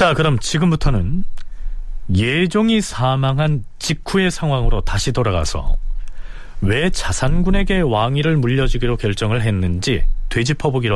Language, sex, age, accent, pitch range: Korean, male, 40-59, native, 105-155 Hz